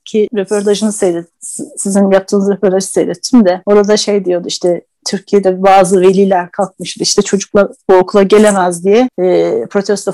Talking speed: 135 wpm